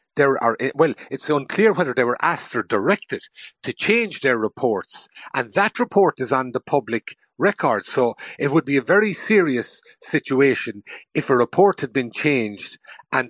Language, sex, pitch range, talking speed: English, male, 120-160 Hz, 170 wpm